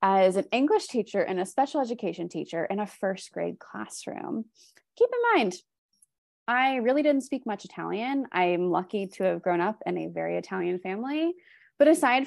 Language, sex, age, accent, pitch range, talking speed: English, female, 20-39, American, 180-245 Hz, 175 wpm